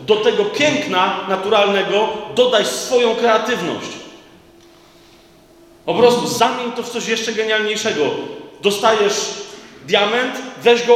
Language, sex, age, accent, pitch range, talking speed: Polish, male, 40-59, native, 205-245 Hz, 105 wpm